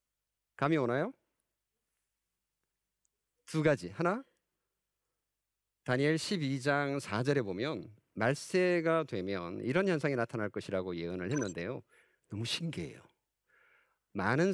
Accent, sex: native, male